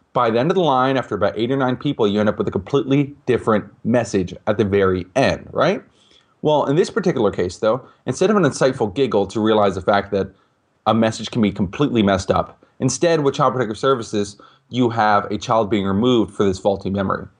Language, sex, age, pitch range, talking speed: English, male, 30-49, 105-135 Hz, 215 wpm